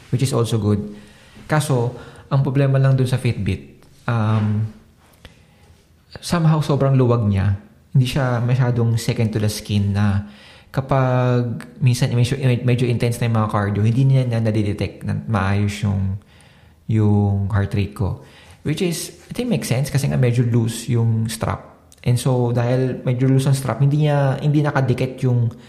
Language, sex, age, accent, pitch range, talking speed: Filipino, male, 20-39, native, 100-130 Hz, 160 wpm